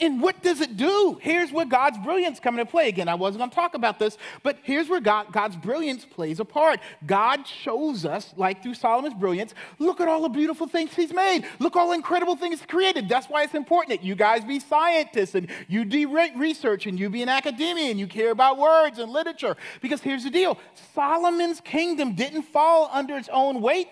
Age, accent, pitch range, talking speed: 40-59, American, 230-330 Hz, 220 wpm